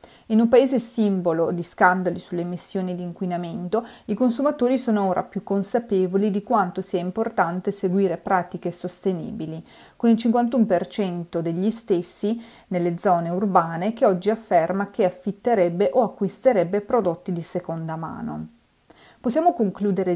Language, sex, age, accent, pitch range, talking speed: Italian, female, 40-59, native, 180-215 Hz, 130 wpm